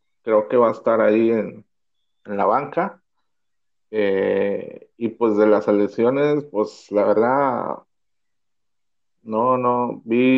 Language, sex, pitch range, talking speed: Spanish, male, 110-145 Hz, 125 wpm